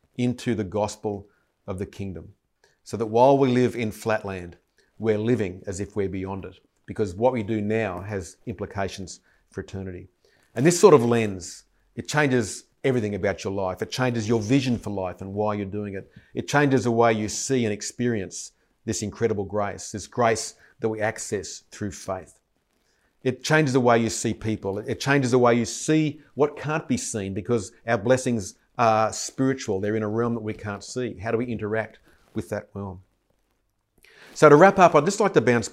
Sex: male